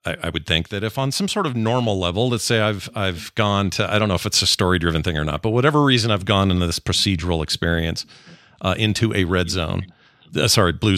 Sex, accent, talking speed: male, American, 245 wpm